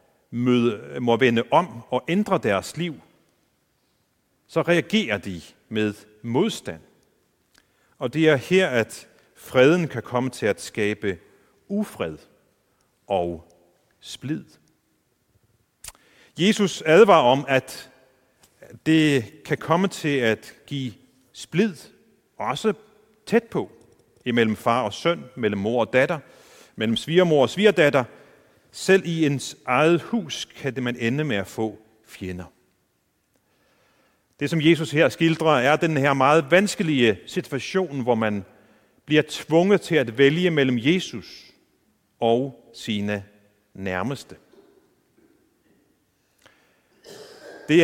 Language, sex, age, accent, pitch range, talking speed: Danish, male, 40-59, native, 115-170 Hz, 110 wpm